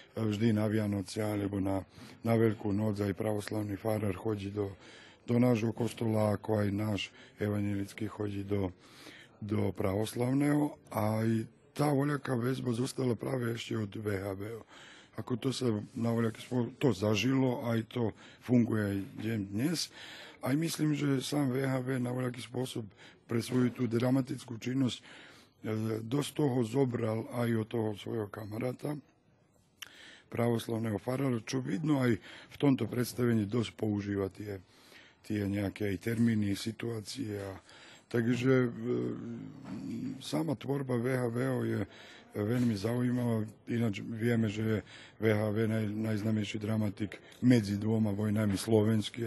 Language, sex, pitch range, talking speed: Slovak, male, 105-125 Hz, 125 wpm